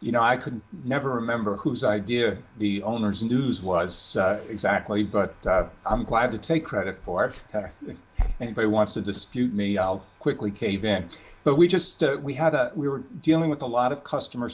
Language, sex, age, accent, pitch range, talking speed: English, male, 60-79, American, 105-125 Hz, 200 wpm